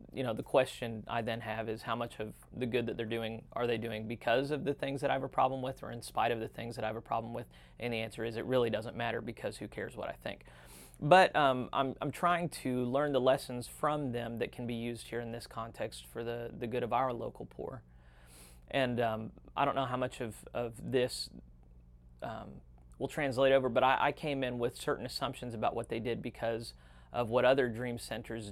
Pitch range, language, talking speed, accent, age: 110-130 Hz, English, 240 wpm, American, 30-49